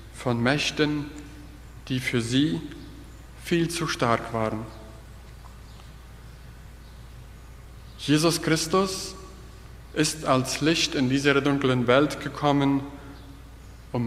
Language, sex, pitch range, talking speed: German, male, 115-160 Hz, 85 wpm